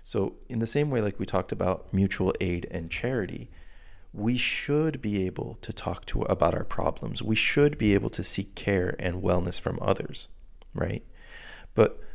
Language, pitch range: English, 90-115 Hz